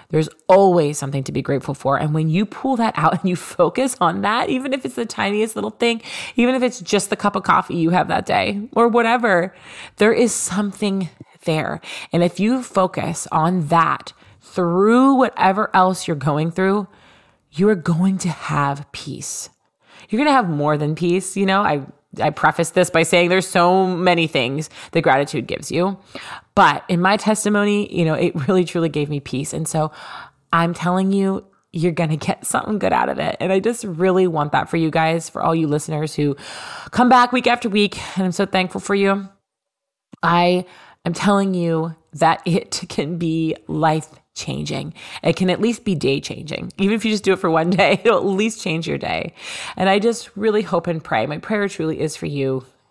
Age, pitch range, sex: 20-39, 160-200 Hz, female